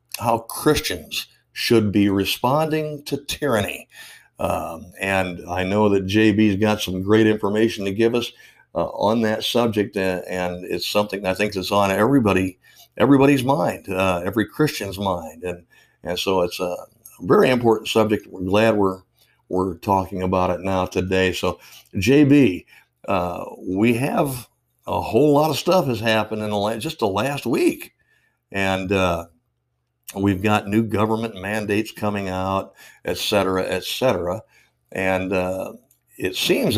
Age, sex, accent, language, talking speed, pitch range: 60-79, male, American, English, 150 wpm, 95-115 Hz